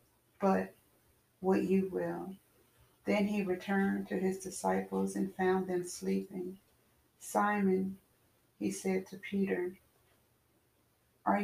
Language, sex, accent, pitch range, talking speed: English, female, American, 180-200 Hz, 105 wpm